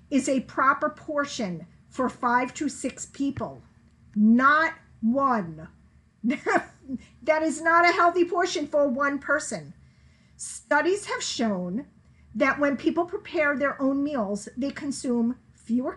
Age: 40-59